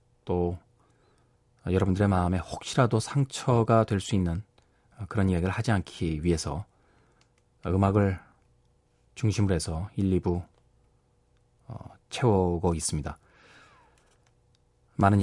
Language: Korean